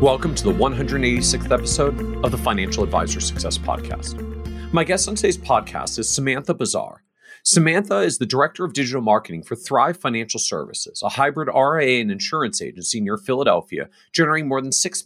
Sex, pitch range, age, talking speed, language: male, 110-170 Hz, 40-59, 165 wpm, English